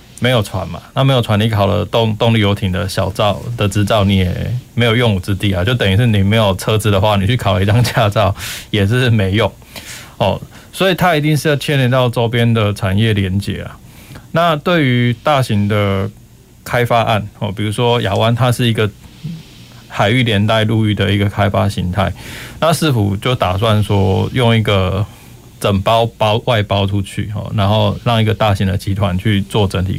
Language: Chinese